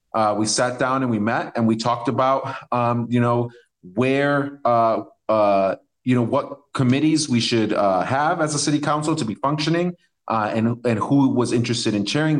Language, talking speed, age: English, 195 wpm, 30-49